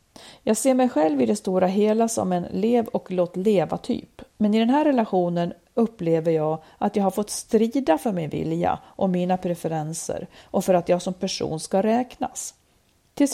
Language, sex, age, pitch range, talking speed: Swedish, female, 40-59, 175-240 Hz, 170 wpm